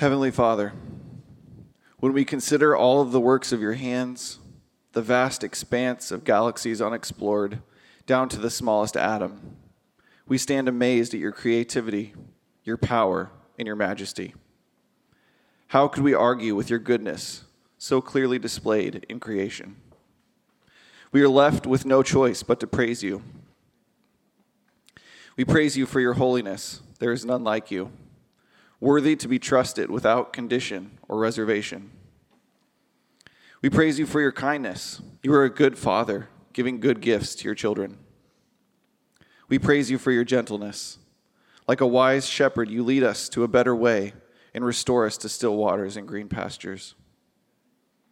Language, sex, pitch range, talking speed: English, male, 115-135 Hz, 145 wpm